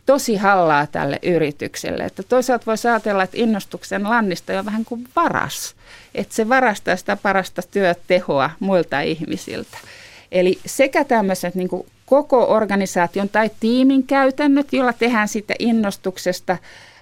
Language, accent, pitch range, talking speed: Finnish, native, 170-220 Hz, 125 wpm